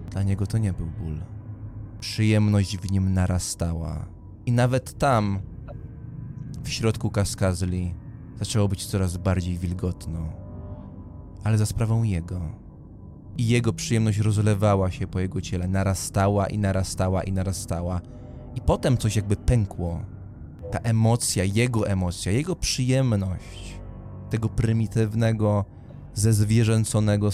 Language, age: English, 20-39